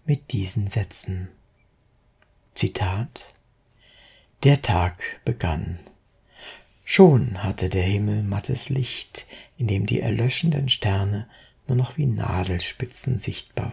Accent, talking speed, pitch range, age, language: German, 100 wpm, 105-130 Hz, 60-79, German